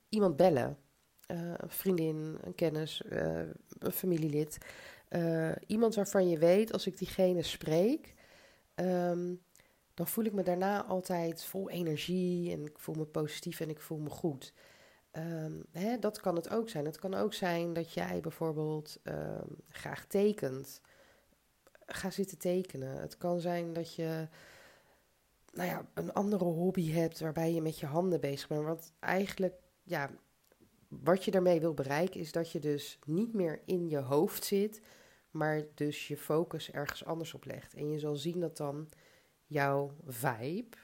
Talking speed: 155 wpm